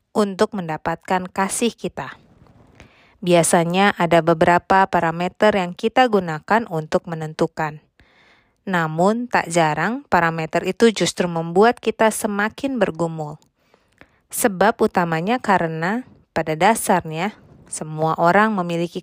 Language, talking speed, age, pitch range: Indonesian, 100 wpm, 20-39, 170-215 Hz